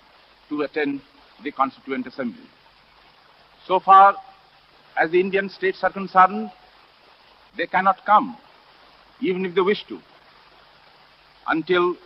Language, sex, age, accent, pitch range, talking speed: Hindi, male, 60-79, native, 165-210 Hz, 110 wpm